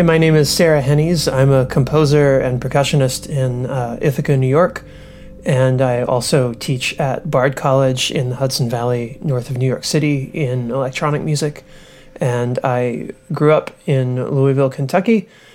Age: 30-49